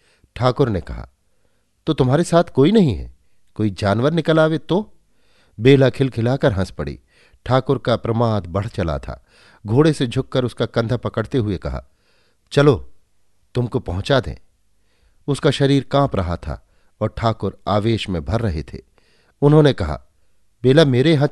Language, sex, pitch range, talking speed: Hindi, male, 95-130 Hz, 145 wpm